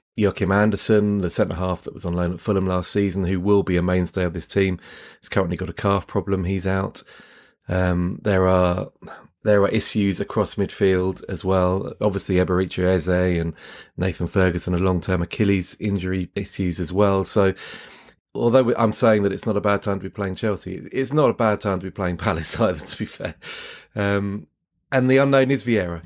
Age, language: 30-49, English